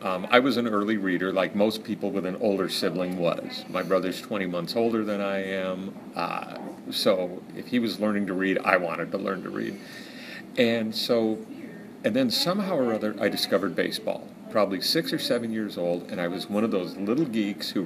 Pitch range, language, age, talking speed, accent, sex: 100-125 Hz, English, 40-59, 205 wpm, American, male